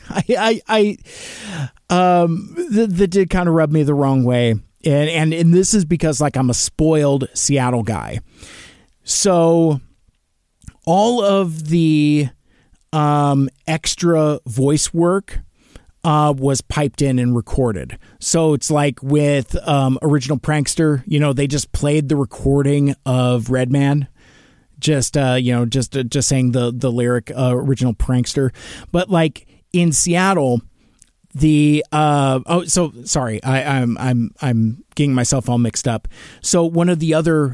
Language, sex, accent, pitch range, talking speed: English, male, American, 125-155 Hz, 150 wpm